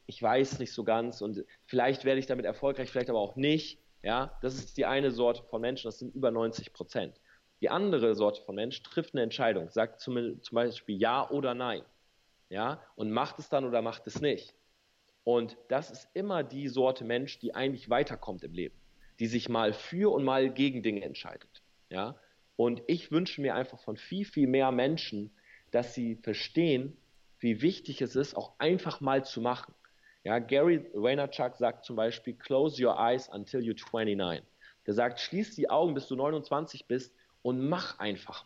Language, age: German, 40-59